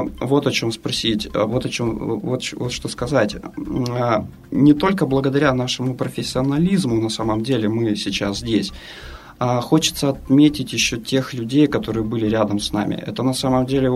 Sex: male